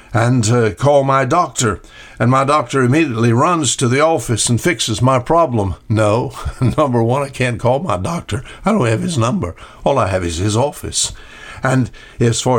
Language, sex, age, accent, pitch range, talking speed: English, male, 60-79, American, 105-135 Hz, 185 wpm